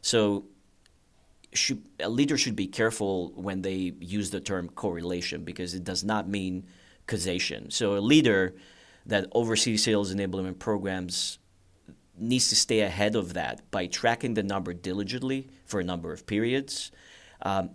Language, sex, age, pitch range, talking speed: English, male, 30-49, 95-110 Hz, 145 wpm